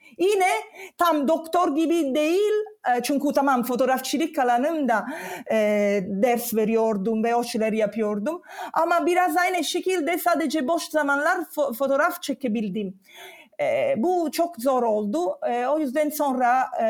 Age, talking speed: 40-59, 105 wpm